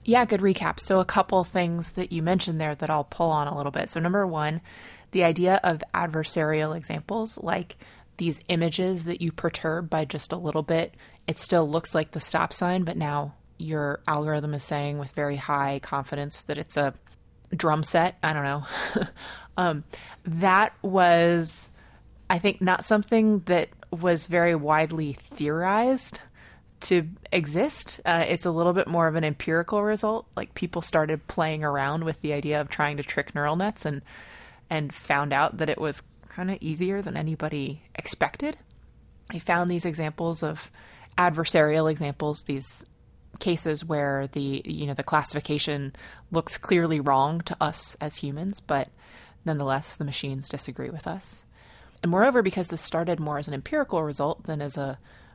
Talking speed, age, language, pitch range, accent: 170 wpm, 20-39, English, 150-175 Hz, American